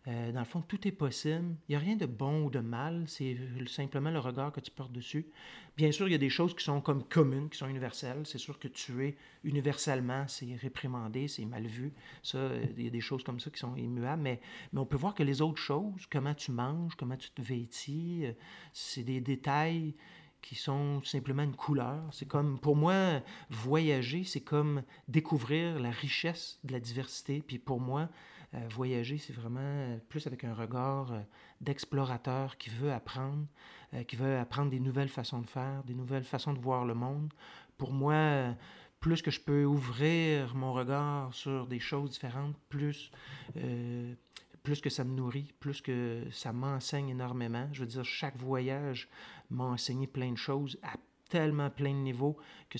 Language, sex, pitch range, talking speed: French, male, 125-145 Hz, 190 wpm